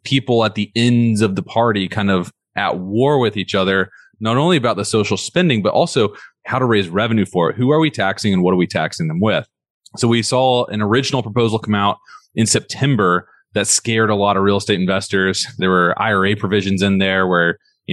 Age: 20-39